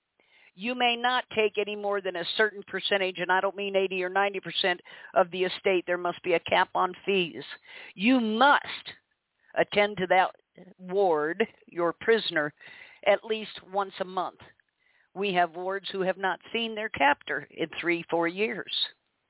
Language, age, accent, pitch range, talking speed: English, 50-69, American, 175-210 Hz, 165 wpm